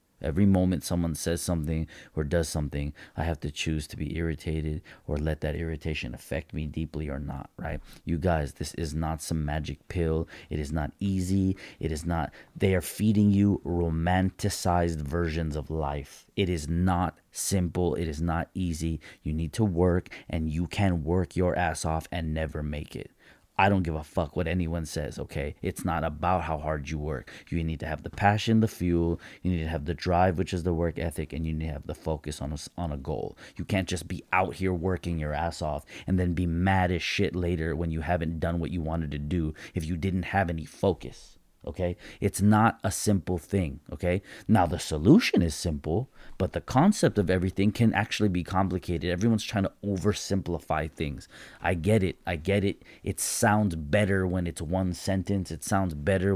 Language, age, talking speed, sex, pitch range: English, 30-49, 205 wpm, male, 80-95 Hz